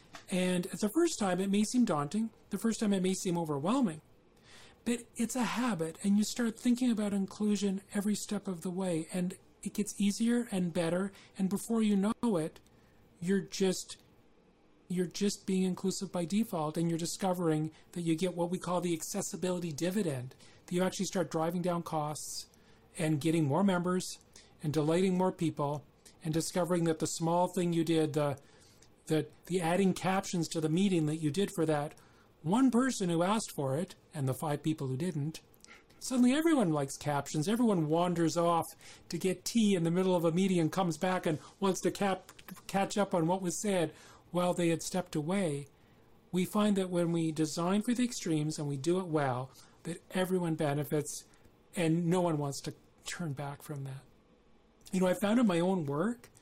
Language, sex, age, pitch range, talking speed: English, male, 40-59, 155-195 Hz, 190 wpm